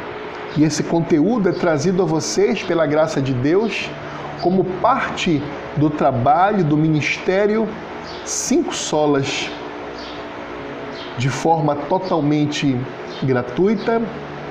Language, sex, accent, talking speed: Portuguese, male, Brazilian, 95 wpm